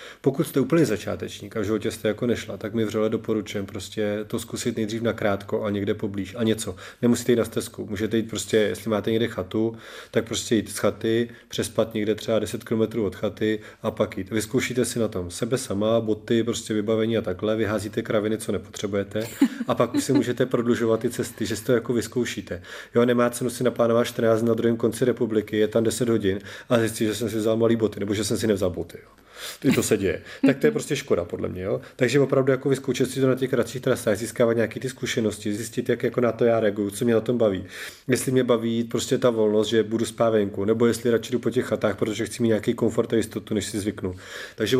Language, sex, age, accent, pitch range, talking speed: Czech, male, 30-49, native, 110-120 Hz, 230 wpm